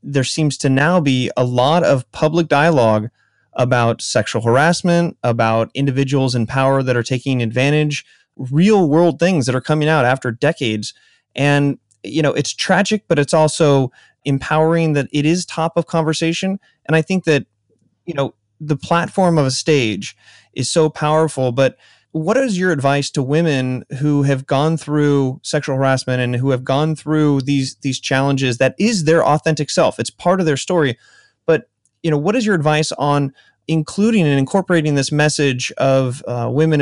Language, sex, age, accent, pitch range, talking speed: English, male, 30-49, American, 130-165 Hz, 175 wpm